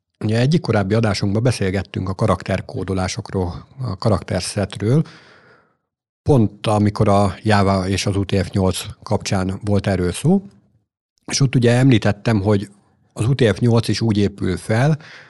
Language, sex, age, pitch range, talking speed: Hungarian, male, 50-69, 95-130 Hz, 120 wpm